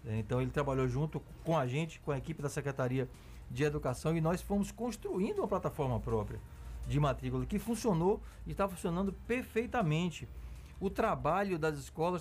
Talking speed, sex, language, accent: 160 wpm, male, Portuguese, Brazilian